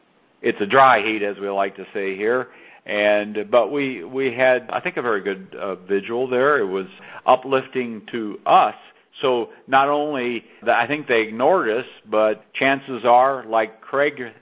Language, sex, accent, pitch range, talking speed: English, male, American, 110-135 Hz, 175 wpm